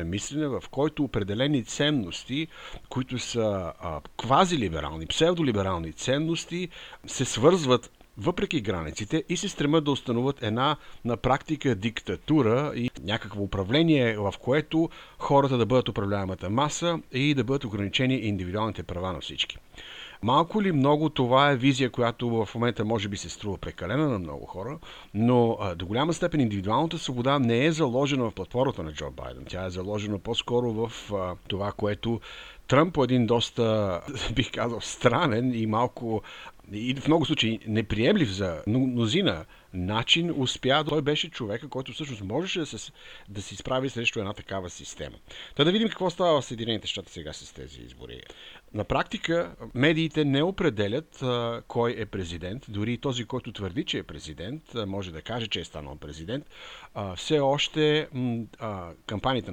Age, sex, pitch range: 60-79, male, 100-145 Hz